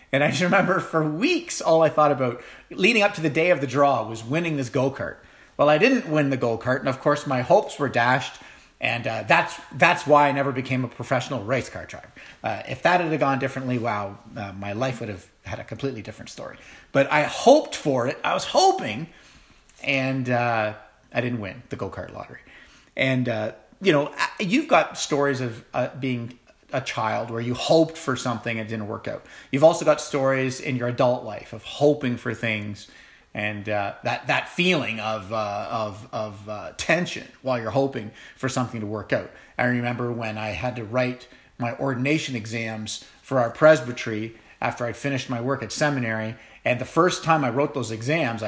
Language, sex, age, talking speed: English, male, 30-49, 200 wpm